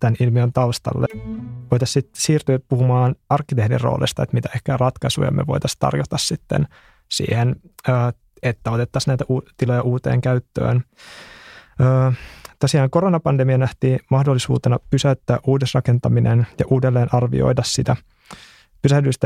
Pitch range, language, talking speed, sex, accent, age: 120-135 Hz, Finnish, 110 wpm, male, native, 20-39